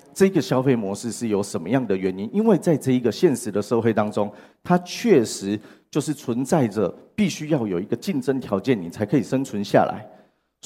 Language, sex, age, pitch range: Chinese, male, 40-59, 110-155 Hz